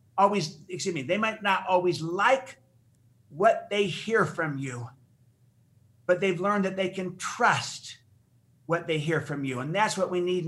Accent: American